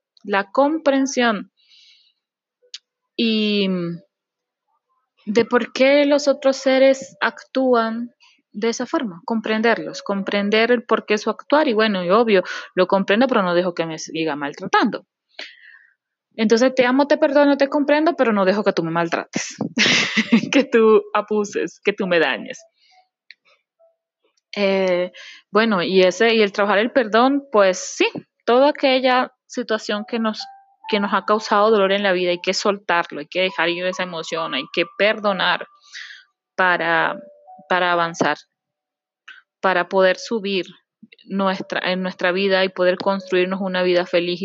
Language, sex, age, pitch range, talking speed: Spanish, female, 20-39, 185-275 Hz, 145 wpm